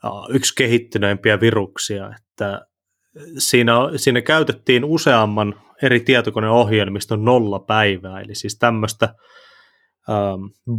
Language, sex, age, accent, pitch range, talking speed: Finnish, male, 20-39, native, 105-125 Hz, 85 wpm